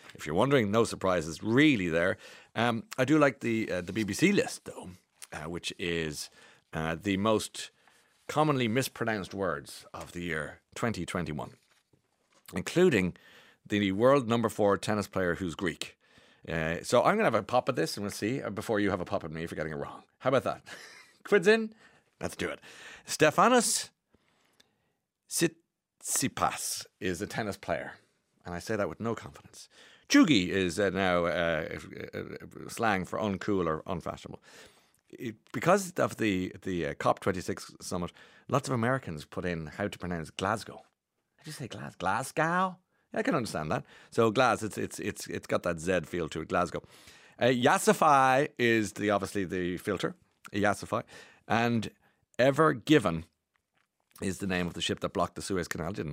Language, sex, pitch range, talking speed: English, male, 90-135 Hz, 175 wpm